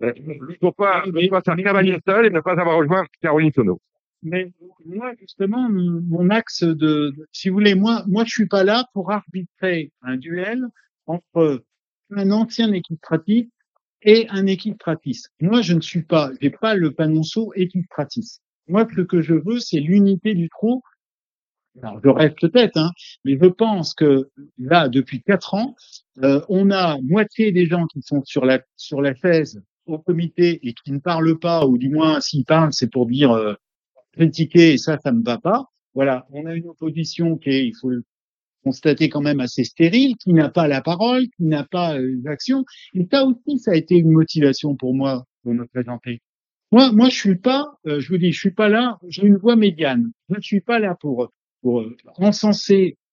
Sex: male